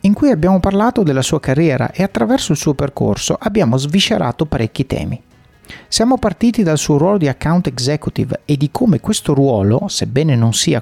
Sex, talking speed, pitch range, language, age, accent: male, 175 wpm, 125-190 Hz, Italian, 30-49, native